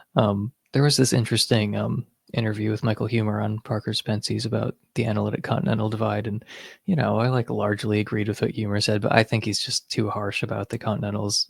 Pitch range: 105-115 Hz